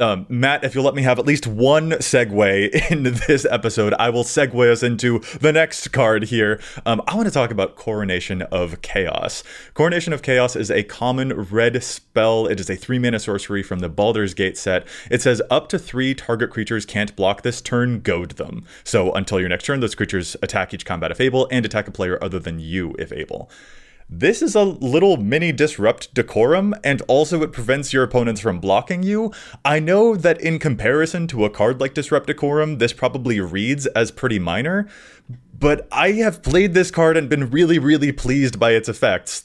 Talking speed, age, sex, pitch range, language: 200 wpm, 30-49, male, 110-150 Hz, English